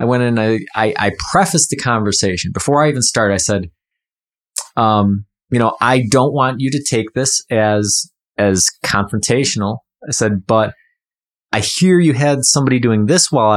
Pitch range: 105-130 Hz